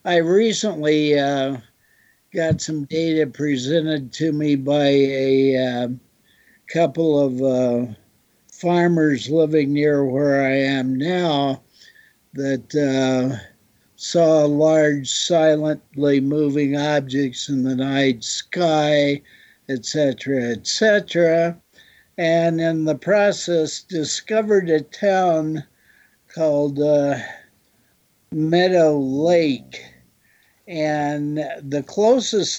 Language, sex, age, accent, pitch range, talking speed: English, male, 60-79, American, 135-165 Hz, 95 wpm